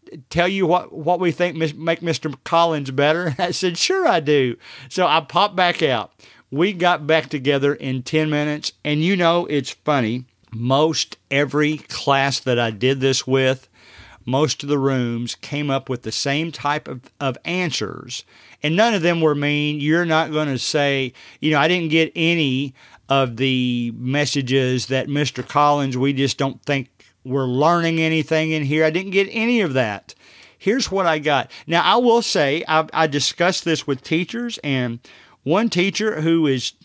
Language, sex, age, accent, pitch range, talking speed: English, male, 50-69, American, 135-165 Hz, 180 wpm